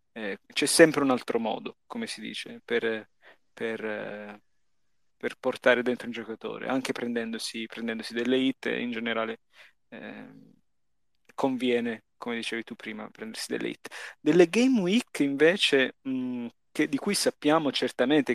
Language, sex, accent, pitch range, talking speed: Italian, male, native, 120-160 Hz, 135 wpm